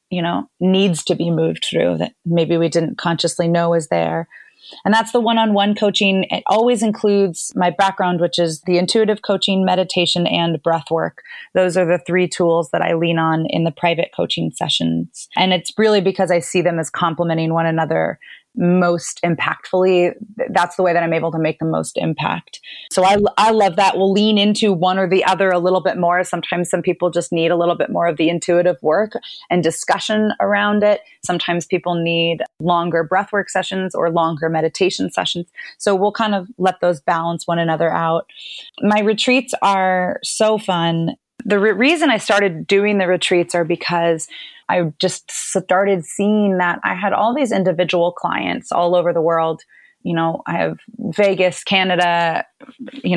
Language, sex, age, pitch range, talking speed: English, female, 30-49, 170-200 Hz, 180 wpm